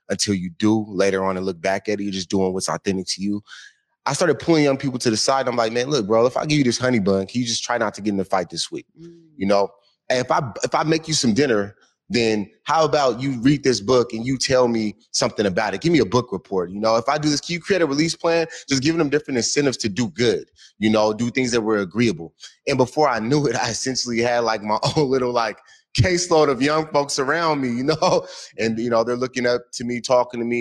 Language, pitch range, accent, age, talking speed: English, 105-135 Hz, American, 30-49, 270 wpm